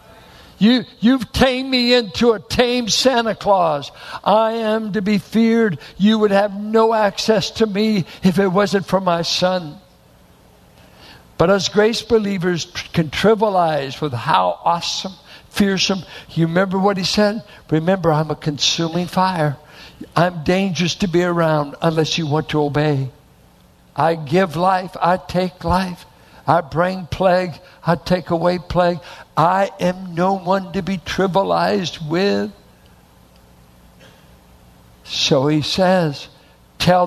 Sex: male